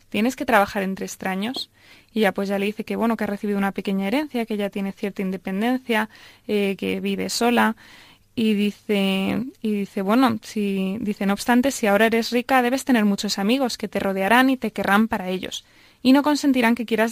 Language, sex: Spanish, female